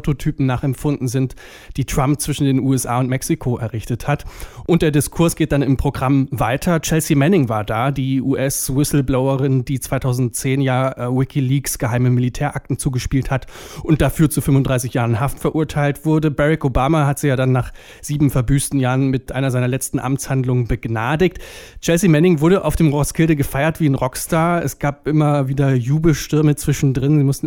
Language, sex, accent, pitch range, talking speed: German, male, German, 130-155 Hz, 165 wpm